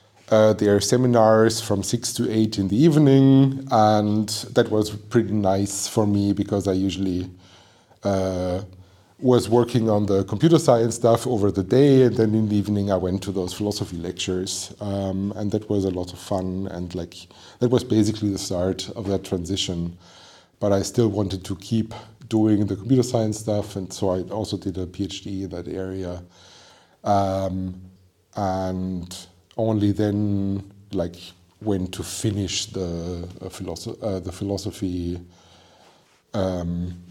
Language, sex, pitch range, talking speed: English, male, 90-105 Hz, 155 wpm